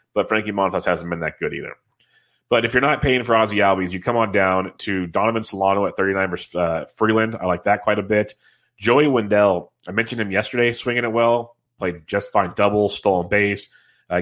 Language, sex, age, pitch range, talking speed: English, male, 30-49, 95-110 Hz, 210 wpm